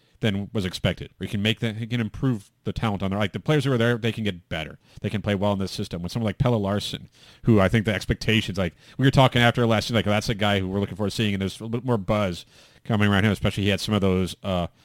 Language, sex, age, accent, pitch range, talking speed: English, male, 40-59, American, 100-125 Hz, 305 wpm